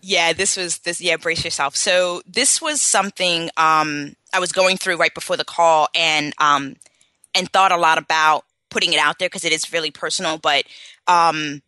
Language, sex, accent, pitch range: English, female, American, 155-190 Hz